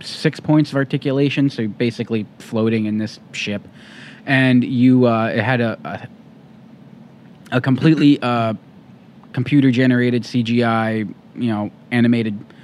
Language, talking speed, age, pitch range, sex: English, 130 wpm, 20-39, 115-135 Hz, male